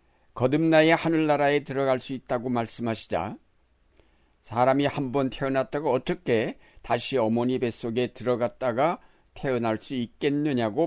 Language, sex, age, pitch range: Korean, male, 60-79, 110-145 Hz